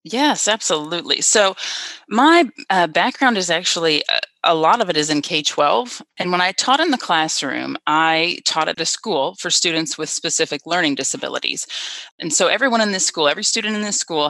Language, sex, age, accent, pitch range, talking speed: English, female, 30-49, American, 150-220 Hz, 185 wpm